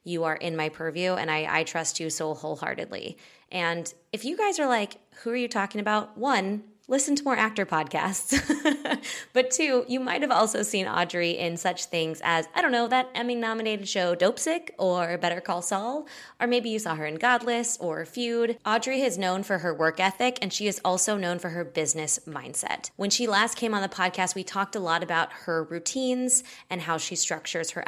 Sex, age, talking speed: female, 20-39, 205 wpm